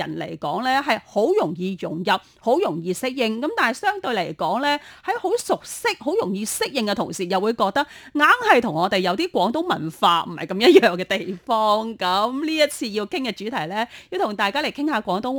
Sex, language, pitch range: female, Chinese, 190-285 Hz